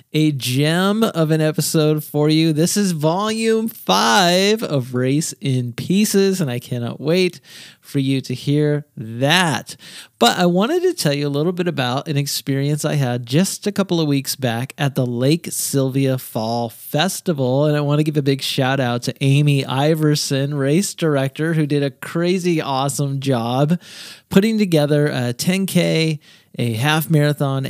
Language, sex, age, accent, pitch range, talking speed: English, male, 30-49, American, 130-165 Hz, 165 wpm